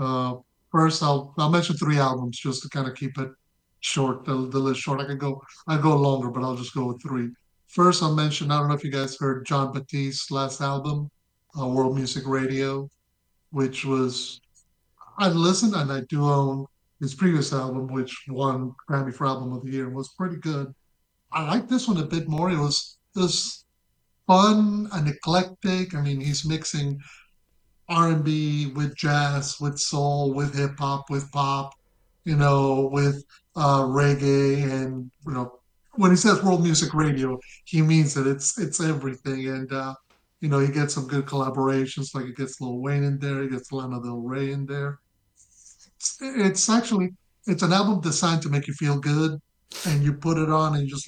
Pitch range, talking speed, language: 135-155 Hz, 190 wpm, English